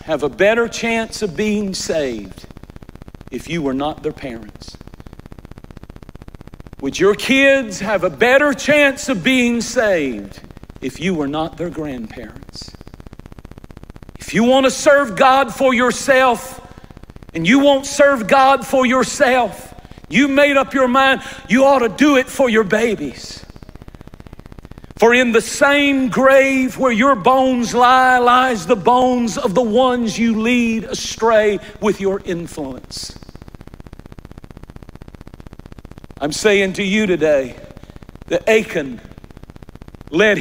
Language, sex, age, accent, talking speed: English, male, 50-69, American, 130 wpm